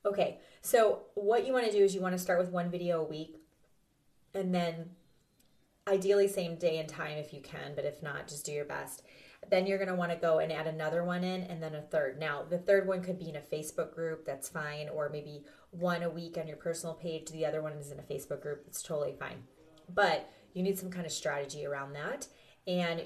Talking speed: 240 wpm